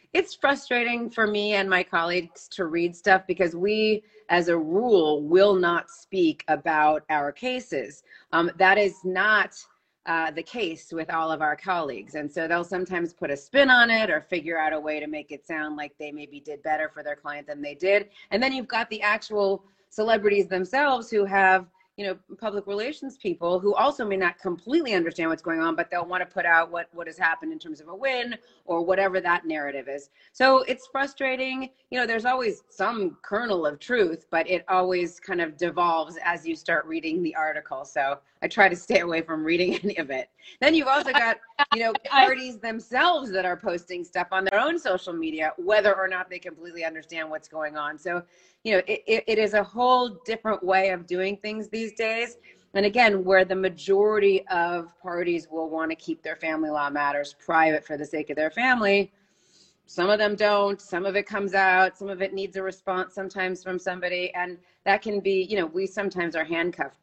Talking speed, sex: 205 wpm, female